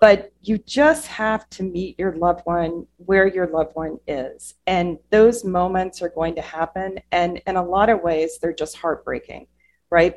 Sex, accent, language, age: female, American, English, 40-59